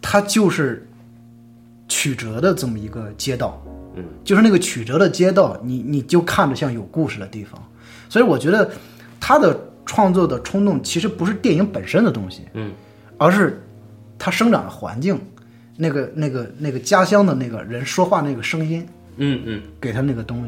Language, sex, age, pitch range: Chinese, male, 20-39, 110-155 Hz